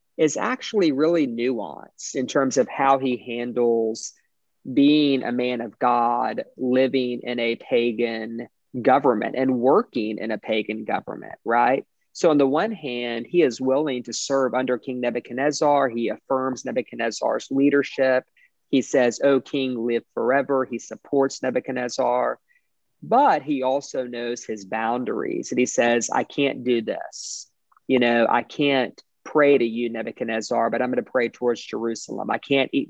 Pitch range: 120-135 Hz